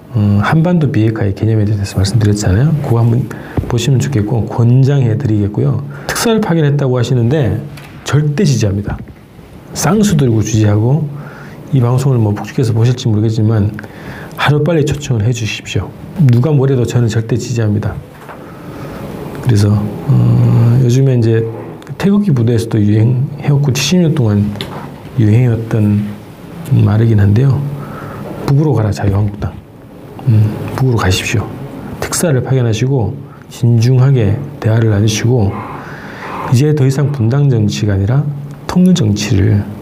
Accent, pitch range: native, 110-140 Hz